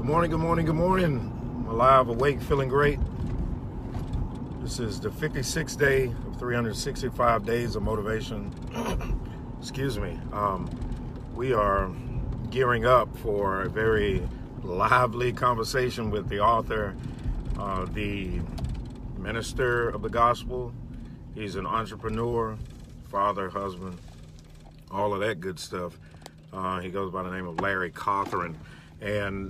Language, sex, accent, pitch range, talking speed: English, male, American, 105-130 Hz, 125 wpm